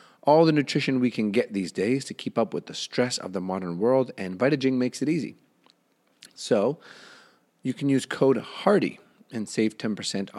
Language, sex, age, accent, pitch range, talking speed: English, male, 30-49, American, 95-125 Hz, 185 wpm